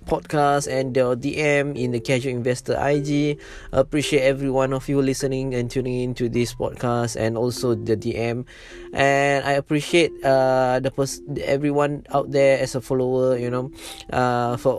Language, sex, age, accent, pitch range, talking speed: English, male, 20-39, Malaysian, 110-130 Hz, 160 wpm